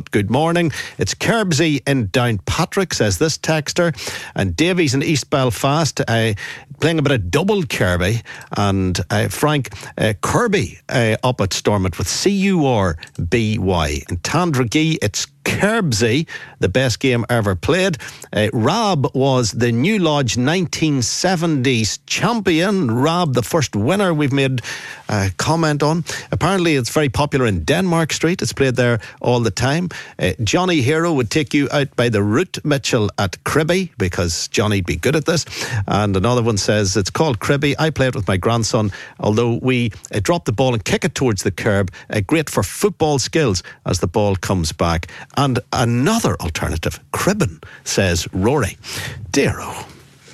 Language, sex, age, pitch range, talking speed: English, male, 60-79, 105-150 Hz, 165 wpm